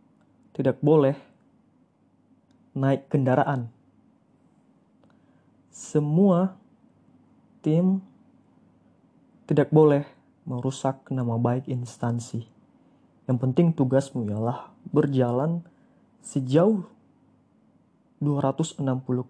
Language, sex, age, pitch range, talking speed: Indonesian, male, 20-39, 125-165 Hz, 60 wpm